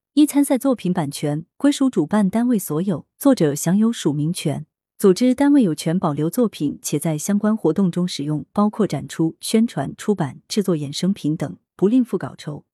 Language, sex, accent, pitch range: Chinese, female, native, 160-220 Hz